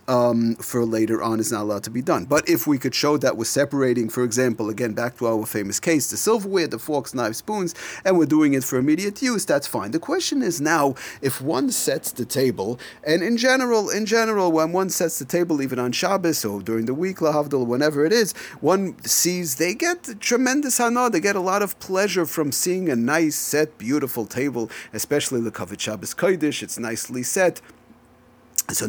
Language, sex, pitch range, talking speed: English, male, 125-180 Hz, 205 wpm